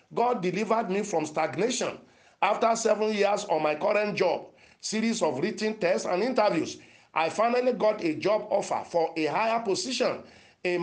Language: English